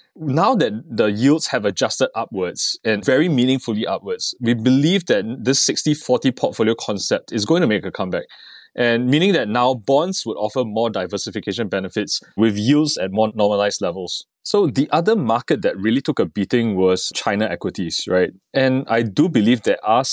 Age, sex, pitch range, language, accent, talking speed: 20-39, male, 110-135 Hz, English, Malaysian, 175 wpm